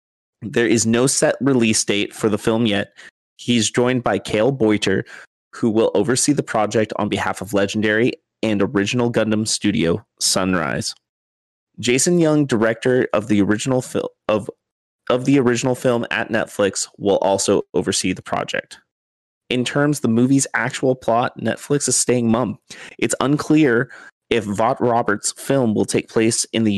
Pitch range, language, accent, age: 110-130 Hz, English, American, 30-49